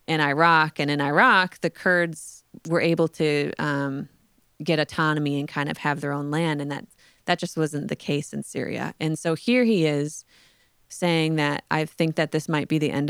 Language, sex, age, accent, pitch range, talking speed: English, female, 20-39, American, 145-165 Hz, 200 wpm